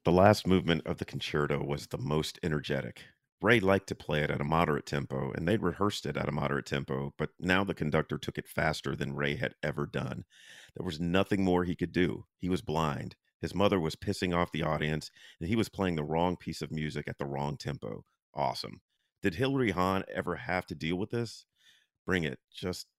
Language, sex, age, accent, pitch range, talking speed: English, male, 40-59, American, 75-90 Hz, 215 wpm